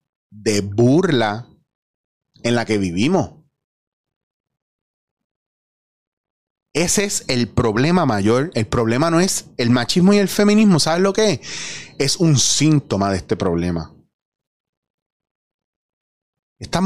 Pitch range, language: 115-165 Hz, Spanish